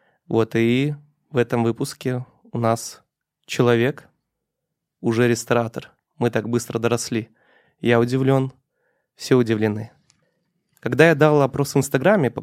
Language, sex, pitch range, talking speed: Russian, male, 115-140 Hz, 120 wpm